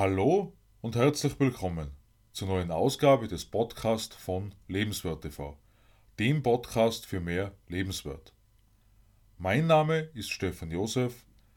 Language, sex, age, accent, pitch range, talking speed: German, male, 30-49, Austrian, 100-130 Hz, 115 wpm